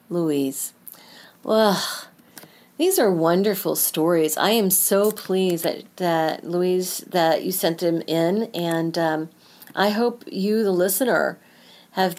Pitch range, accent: 165-200 Hz, American